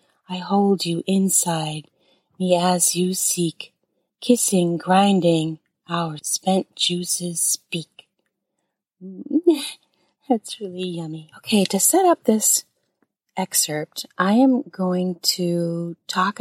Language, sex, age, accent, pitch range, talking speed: English, female, 30-49, American, 165-200 Hz, 100 wpm